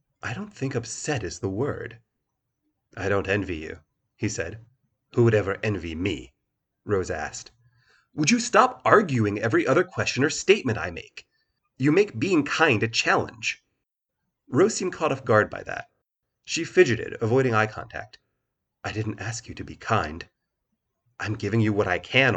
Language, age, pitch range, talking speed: English, 30-49, 100-130 Hz, 165 wpm